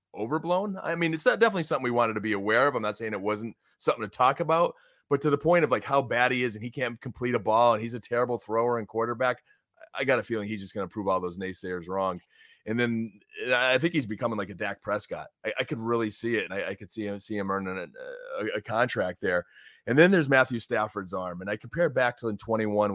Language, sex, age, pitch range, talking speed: English, male, 30-49, 105-140 Hz, 265 wpm